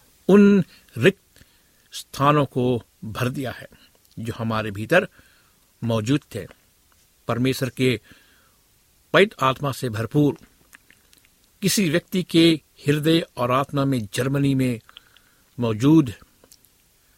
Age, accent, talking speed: 60-79, native, 100 wpm